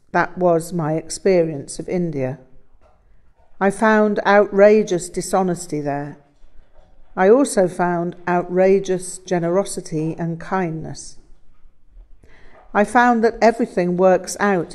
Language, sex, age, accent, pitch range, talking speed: English, female, 50-69, British, 160-190 Hz, 100 wpm